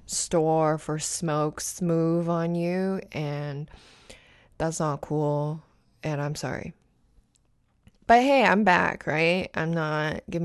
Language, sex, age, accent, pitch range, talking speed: English, female, 20-39, American, 150-165 Hz, 120 wpm